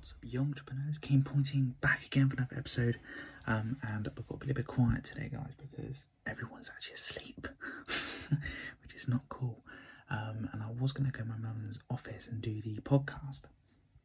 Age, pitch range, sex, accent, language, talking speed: 20-39, 120-140 Hz, male, British, English, 180 wpm